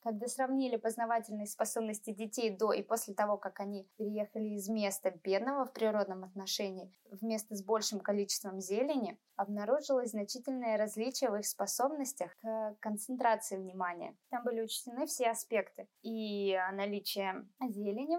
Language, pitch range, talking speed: Russian, 200-245 Hz, 130 wpm